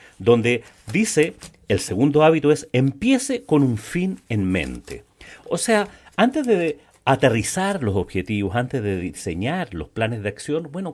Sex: male